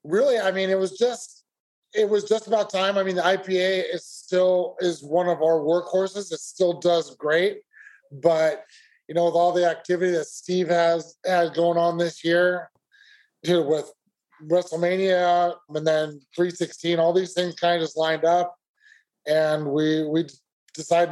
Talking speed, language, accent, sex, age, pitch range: 170 wpm, English, American, male, 30-49, 165-185 Hz